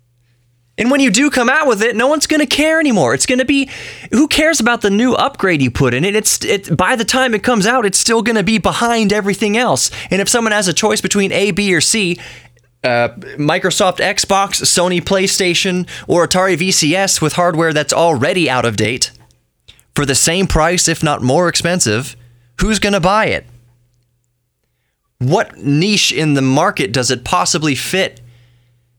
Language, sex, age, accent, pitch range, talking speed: English, male, 20-39, American, 120-190 Hz, 190 wpm